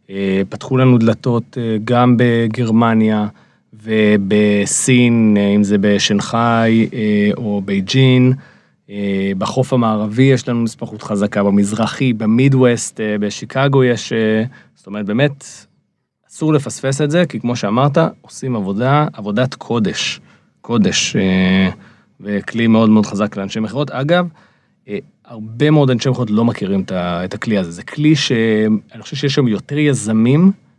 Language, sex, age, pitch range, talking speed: Hebrew, male, 30-49, 105-130 Hz, 115 wpm